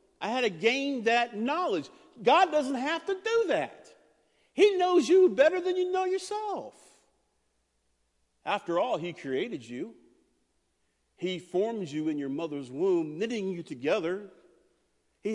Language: English